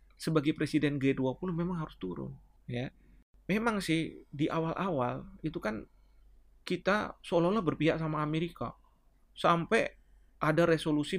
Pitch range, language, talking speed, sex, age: 150-235 Hz, Indonesian, 115 wpm, male, 30-49